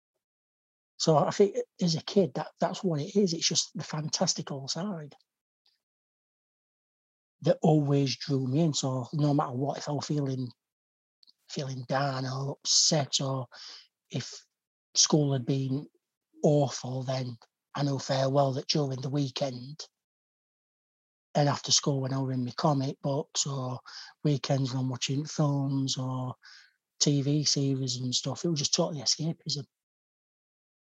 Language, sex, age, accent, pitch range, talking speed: English, male, 60-79, British, 135-160 Hz, 145 wpm